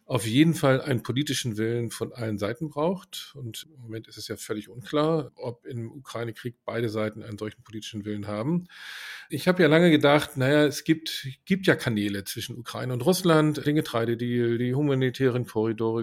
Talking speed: 180 wpm